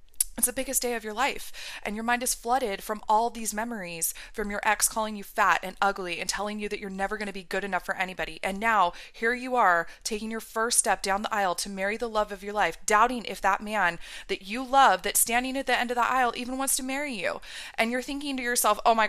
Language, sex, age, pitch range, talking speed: English, female, 20-39, 190-230 Hz, 260 wpm